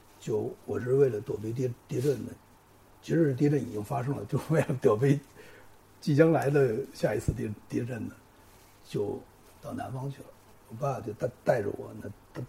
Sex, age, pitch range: male, 60-79, 110-150 Hz